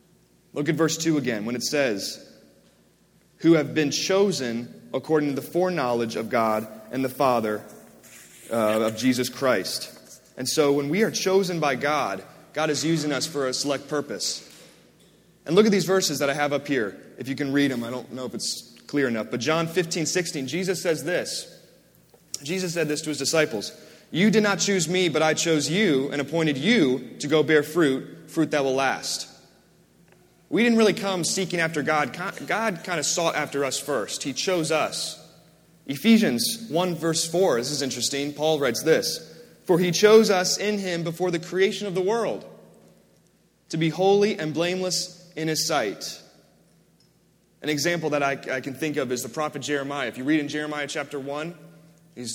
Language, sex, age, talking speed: English, male, 30-49, 185 wpm